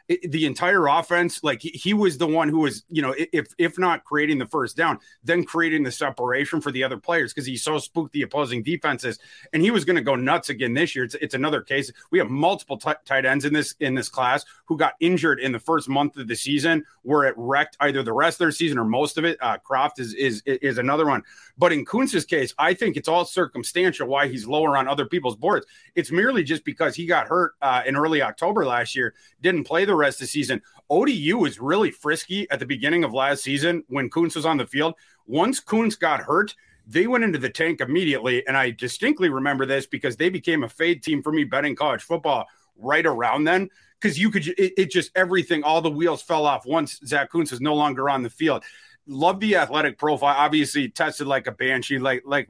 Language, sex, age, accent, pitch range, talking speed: English, male, 30-49, American, 135-170 Hz, 235 wpm